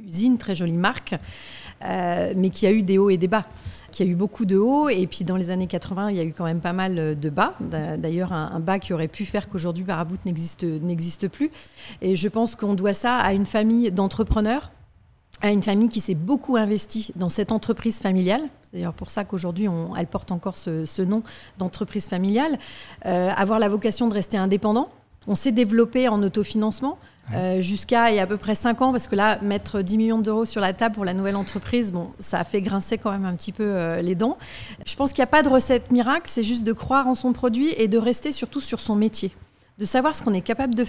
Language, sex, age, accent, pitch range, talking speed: French, female, 40-59, French, 190-230 Hz, 240 wpm